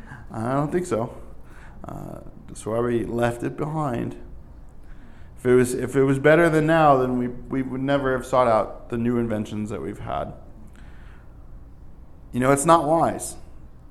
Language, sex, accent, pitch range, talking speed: English, male, American, 110-140 Hz, 175 wpm